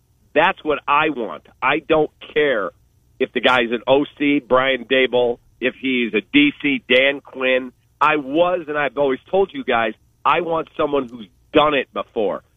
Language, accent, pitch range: English, American, 135-185 Hz